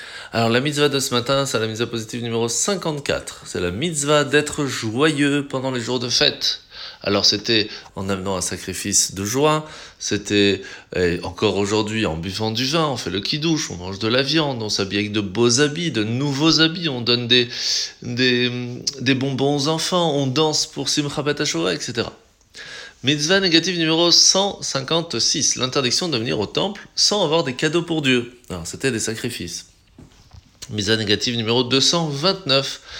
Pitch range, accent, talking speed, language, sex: 110-155 Hz, French, 165 wpm, French, male